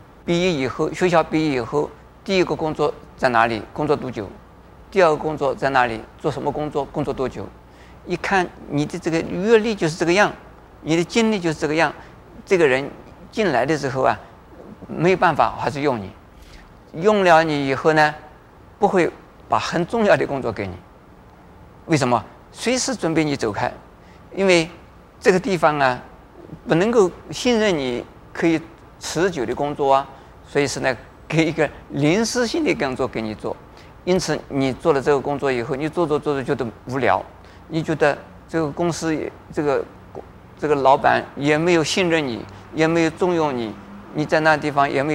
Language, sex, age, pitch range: Chinese, male, 50-69, 125-165 Hz